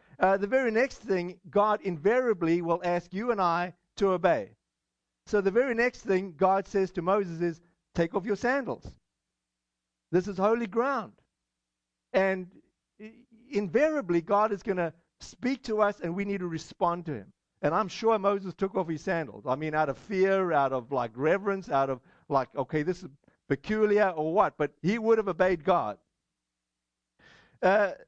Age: 50-69